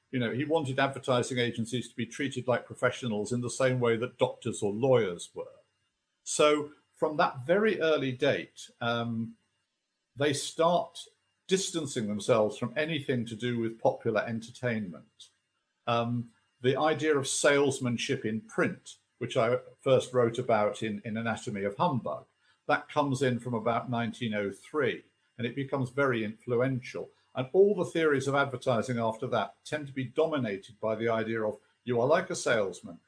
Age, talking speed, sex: 50-69, 160 wpm, male